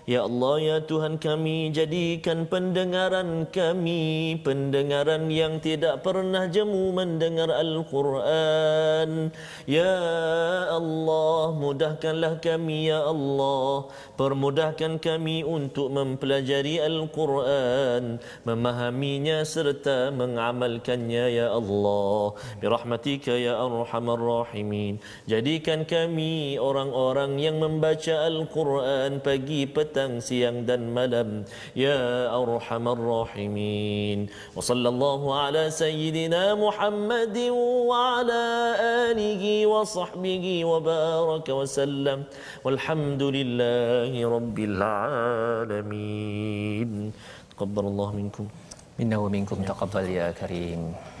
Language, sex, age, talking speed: Malay, male, 30-49, 80 wpm